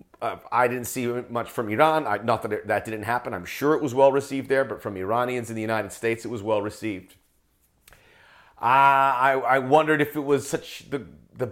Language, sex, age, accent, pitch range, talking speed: English, male, 40-59, American, 105-135 Hz, 210 wpm